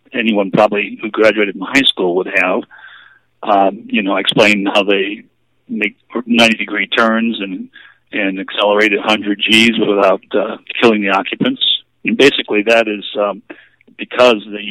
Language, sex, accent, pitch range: English, male, American, 105-115 Hz